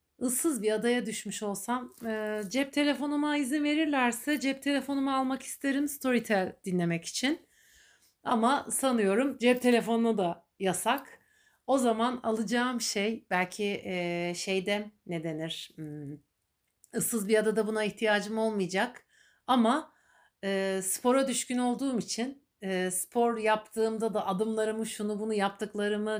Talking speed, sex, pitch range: 120 wpm, female, 190-235 Hz